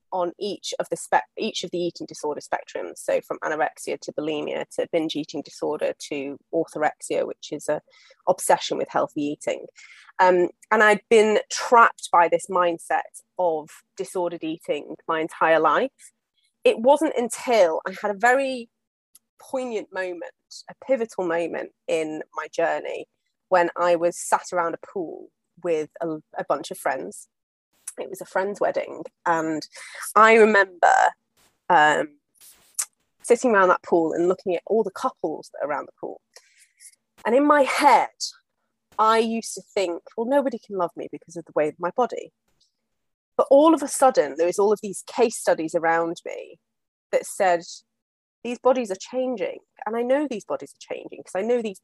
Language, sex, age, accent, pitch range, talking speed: English, female, 20-39, British, 170-265 Hz, 170 wpm